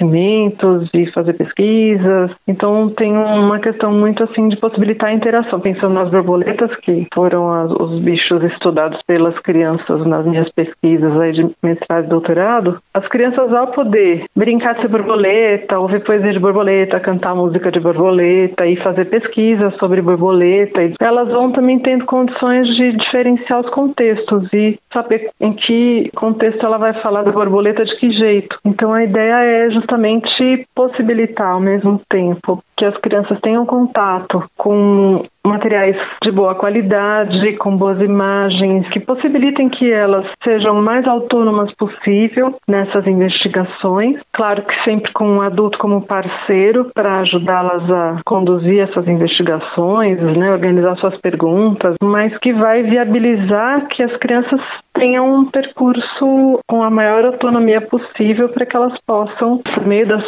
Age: 40-59